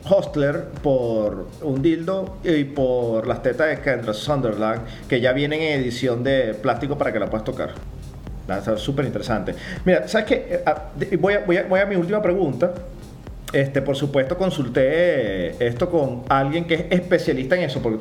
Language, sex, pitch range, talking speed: Spanish, male, 130-175 Hz, 165 wpm